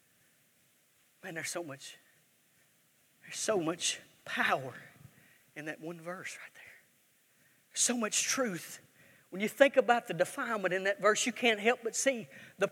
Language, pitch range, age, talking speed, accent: English, 195-270 Hz, 40-59, 140 wpm, American